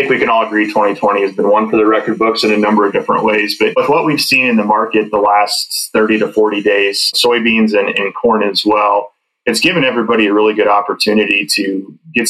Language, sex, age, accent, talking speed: English, male, 20-39, American, 230 wpm